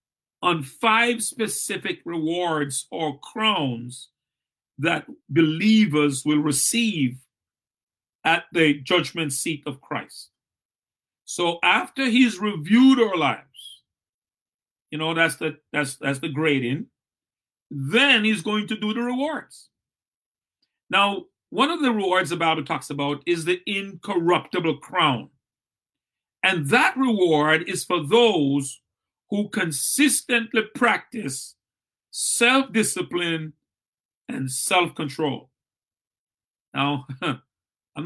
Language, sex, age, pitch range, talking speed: English, male, 50-69, 145-205 Hz, 100 wpm